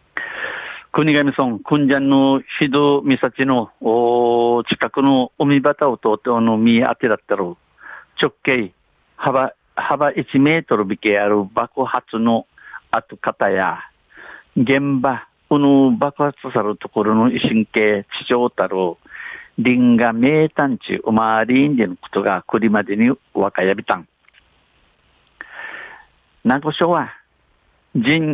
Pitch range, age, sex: 110-145 Hz, 60-79, male